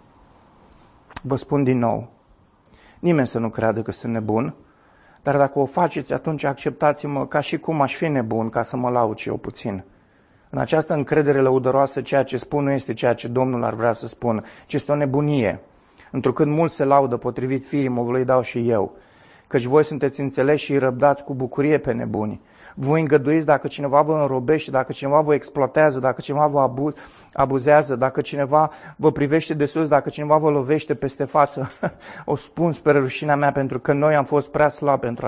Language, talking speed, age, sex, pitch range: Romanian, 185 wpm, 30-49, male, 130-155 Hz